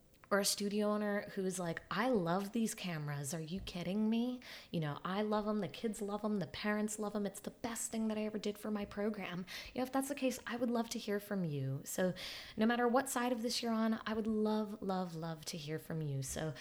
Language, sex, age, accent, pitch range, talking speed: English, female, 20-39, American, 175-220 Hz, 255 wpm